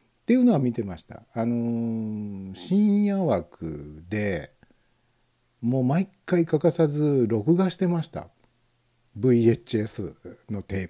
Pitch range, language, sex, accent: 110-160 Hz, Japanese, male, native